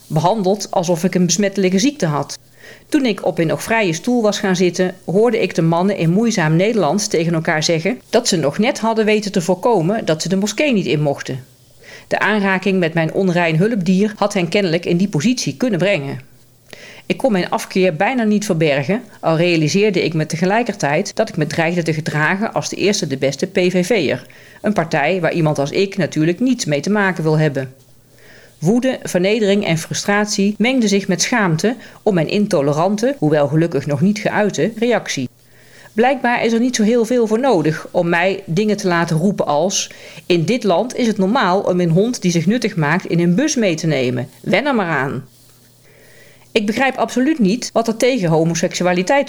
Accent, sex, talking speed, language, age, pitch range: Dutch, female, 190 wpm, Dutch, 40-59, 155-210 Hz